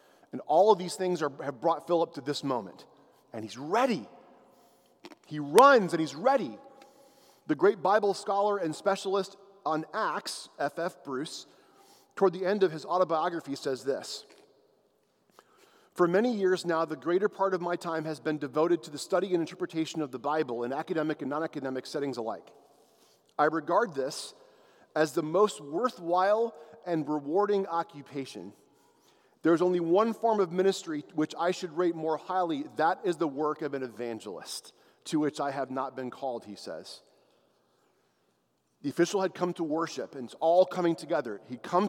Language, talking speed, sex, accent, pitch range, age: English, 165 wpm, male, American, 150-200 Hz, 40-59